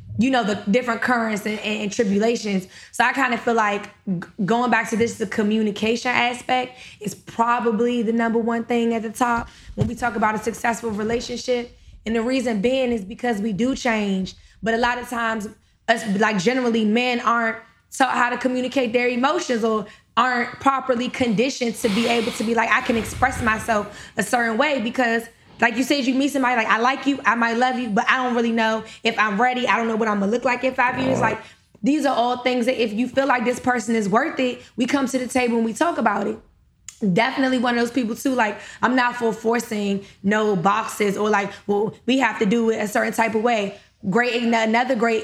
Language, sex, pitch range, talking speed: English, female, 220-250 Hz, 220 wpm